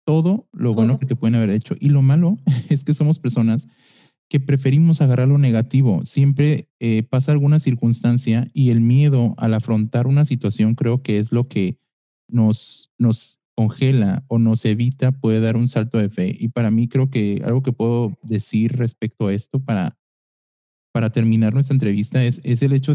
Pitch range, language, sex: 110-135 Hz, Spanish, male